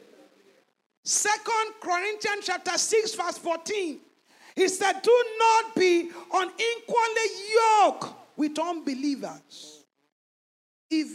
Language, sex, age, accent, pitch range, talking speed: English, male, 50-69, Nigerian, 280-435 Hz, 90 wpm